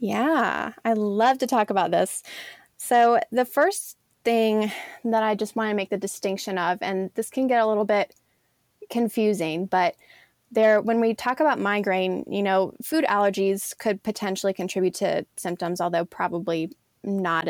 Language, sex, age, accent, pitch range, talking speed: English, female, 20-39, American, 195-235 Hz, 160 wpm